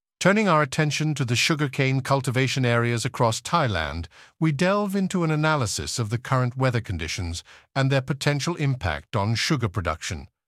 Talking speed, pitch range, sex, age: 155 wpm, 110-140 Hz, male, 50-69